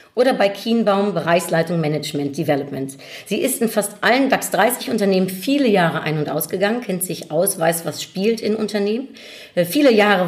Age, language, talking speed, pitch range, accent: 50-69, German, 160 wpm, 175-235 Hz, German